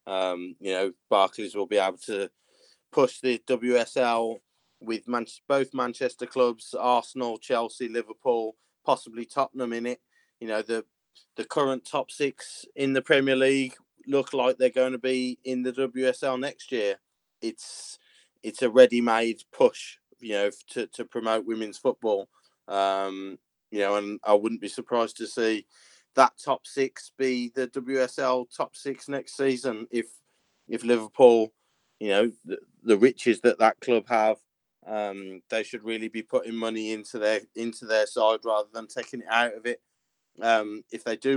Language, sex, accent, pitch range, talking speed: English, male, British, 110-130 Hz, 165 wpm